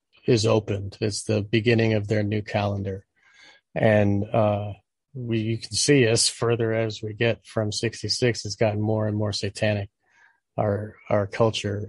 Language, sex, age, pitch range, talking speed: English, male, 40-59, 105-115 Hz, 155 wpm